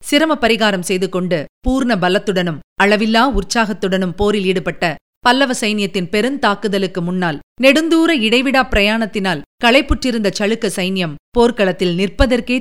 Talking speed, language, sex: 105 wpm, Tamil, female